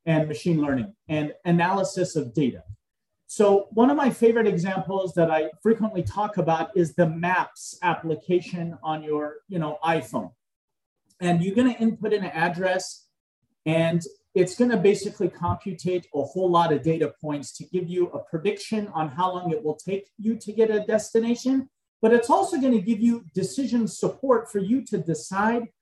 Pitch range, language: 170-220 Hz, English